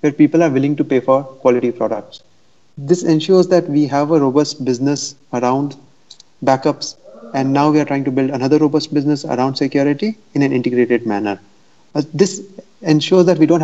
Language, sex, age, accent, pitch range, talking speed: English, male, 30-49, Indian, 130-165 Hz, 180 wpm